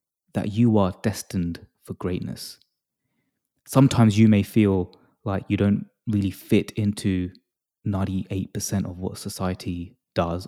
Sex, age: male, 20-39